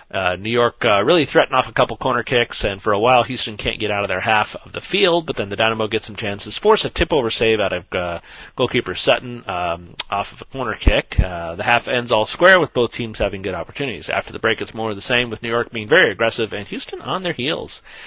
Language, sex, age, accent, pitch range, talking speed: English, male, 40-59, American, 105-145 Hz, 260 wpm